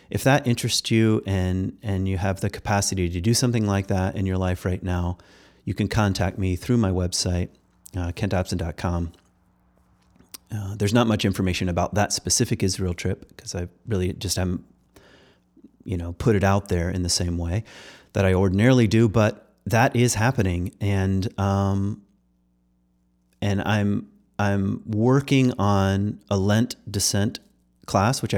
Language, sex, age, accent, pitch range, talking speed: English, male, 30-49, American, 90-110 Hz, 155 wpm